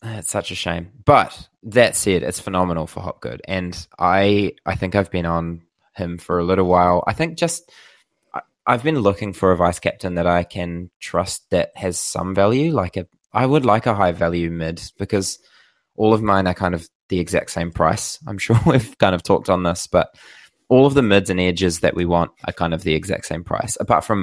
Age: 20-39